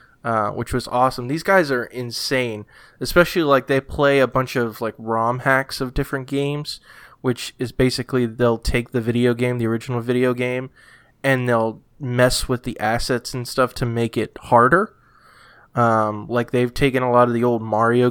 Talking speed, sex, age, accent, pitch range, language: 180 wpm, male, 20-39, American, 115-130 Hz, English